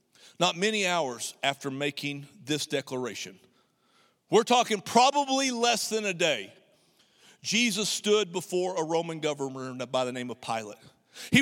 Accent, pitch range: American, 140-220 Hz